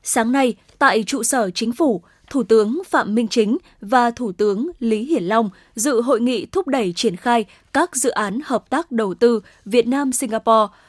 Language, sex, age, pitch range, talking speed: Vietnamese, female, 10-29, 215-260 Hz, 185 wpm